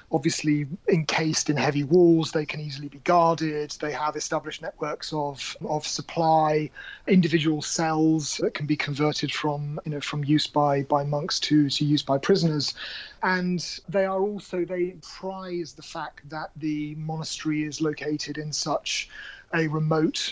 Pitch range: 150-170 Hz